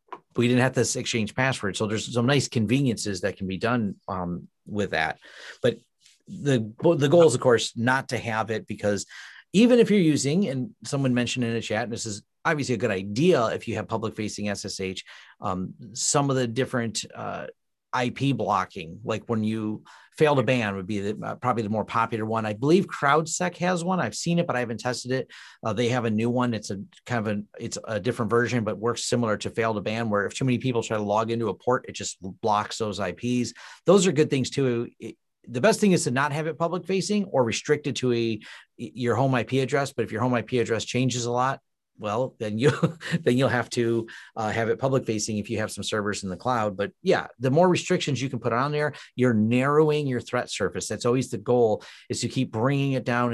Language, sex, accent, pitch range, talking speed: Russian, male, American, 110-140 Hz, 225 wpm